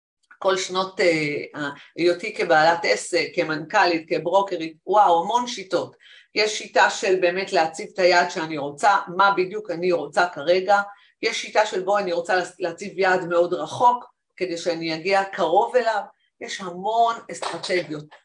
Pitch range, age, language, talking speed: 175-260 Hz, 50-69, Hebrew, 140 wpm